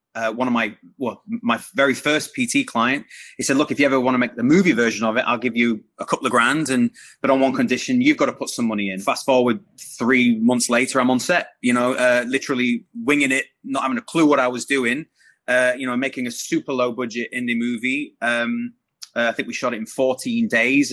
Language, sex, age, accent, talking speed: English, male, 30-49, British, 245 wpm